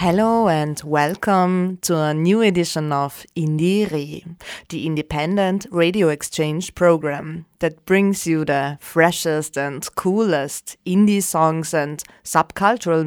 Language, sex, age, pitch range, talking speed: Hungarian, female, 20-39, 155-180 Hz, 115 wpm